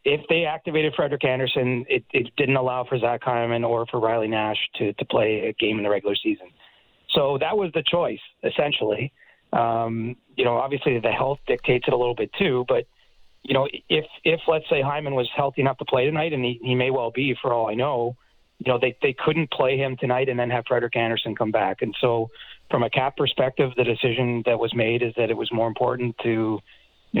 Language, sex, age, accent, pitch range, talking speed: English, male, 30-49, American, 115-130 Hz, 225 wpm